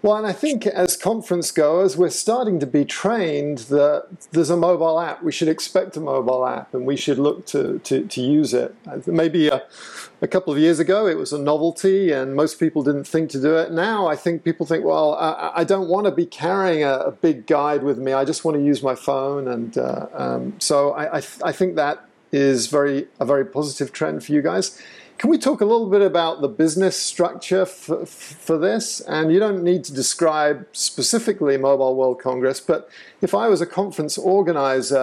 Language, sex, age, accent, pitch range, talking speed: English, male, 50-69, British, 140-175 Hz, 215 wpm